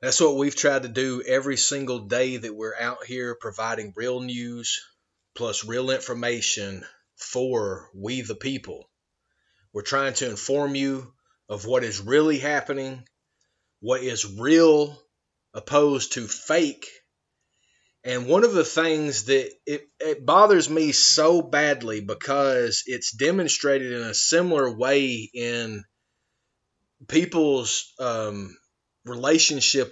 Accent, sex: American, male